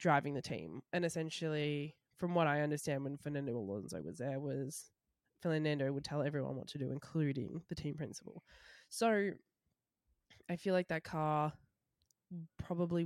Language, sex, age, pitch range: English, female, 20-39, 145-180 Hz